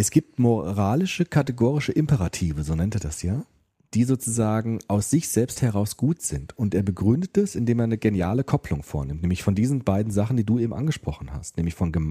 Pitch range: 95-140 Hz